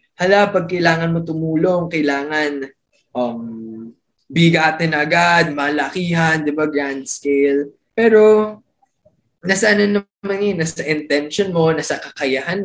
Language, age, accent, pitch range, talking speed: Filipino, 20-39, native, 145-195 Hz, 120 wpm